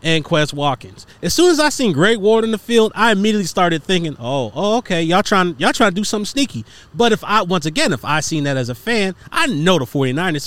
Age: 30-49